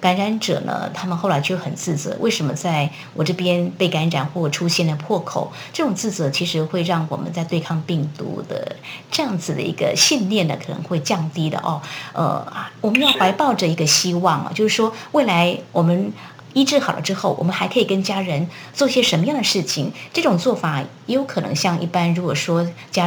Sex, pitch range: female, 165-205 Hz